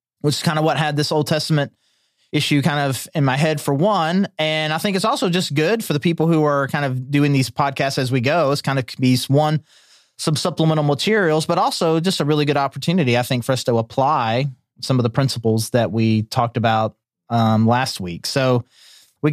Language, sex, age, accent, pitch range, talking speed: English, male, 30-49, American, 125-155 Hz, 220 wpm